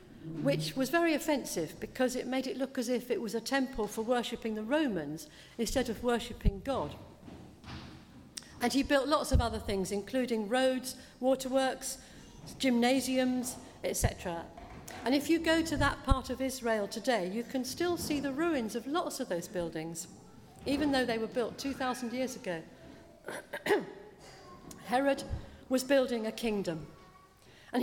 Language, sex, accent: English, female, British